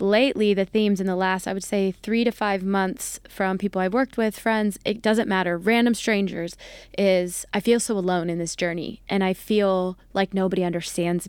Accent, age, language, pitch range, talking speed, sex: American, 20-39, English, 185-215 Hz, 200 wpm, female